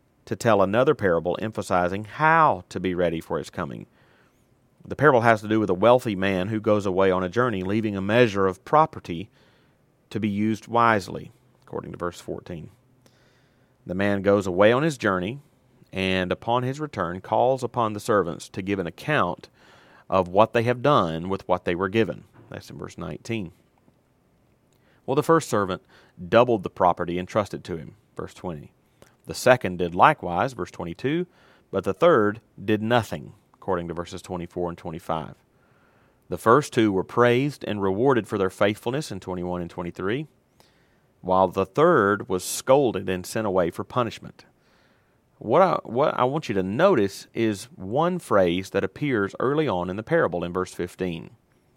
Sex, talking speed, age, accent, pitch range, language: male, 170 wpm, 40-59, American, 90-120 Hz, English